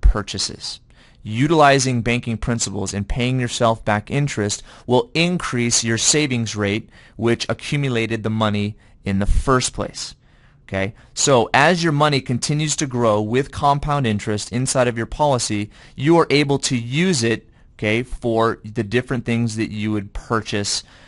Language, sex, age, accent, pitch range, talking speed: English, male, 30-49, American, 105-120 Hz, 150 wpm